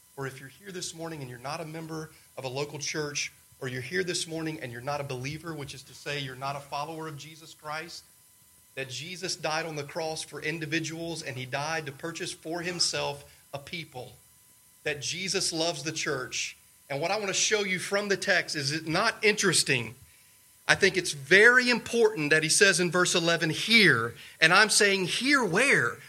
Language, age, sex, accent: English, 40-59, male, American